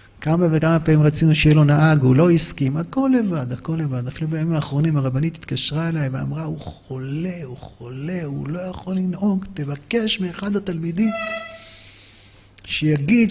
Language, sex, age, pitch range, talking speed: Hebrew, male, 50-69, 125-170 Hz, 150 wpm